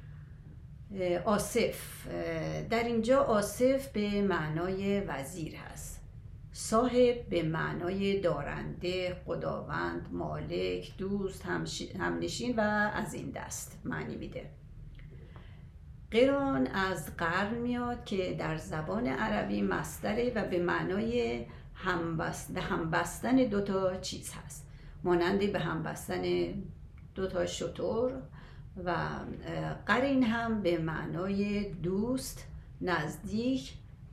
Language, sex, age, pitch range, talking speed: Persian, female, 40-59, 160-220 Hz, 90 wpm